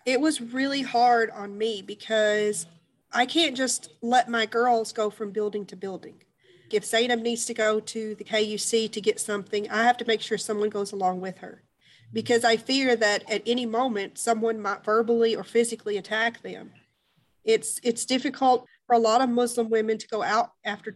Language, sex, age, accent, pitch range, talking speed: English, female, 40-59, American, 215-240 Hz, 190 wpm